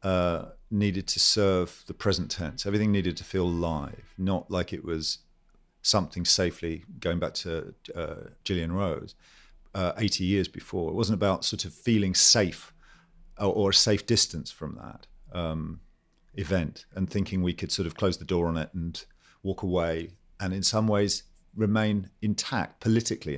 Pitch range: 90-105 Hz